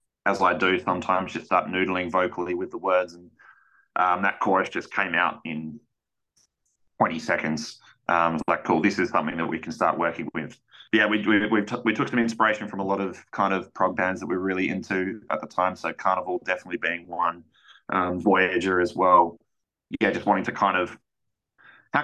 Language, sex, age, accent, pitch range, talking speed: English, male, 20-39, Australian, 85-100 Hz, 205 wpm